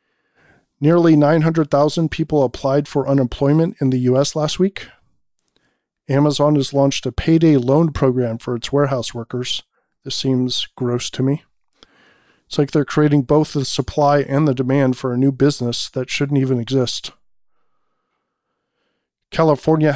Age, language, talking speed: 40-59, English, 140 wpm